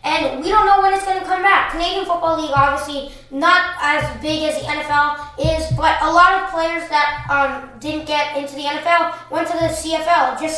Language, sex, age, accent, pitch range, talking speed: English, female, 20-39, American, 280-340 Hz, 215 wpm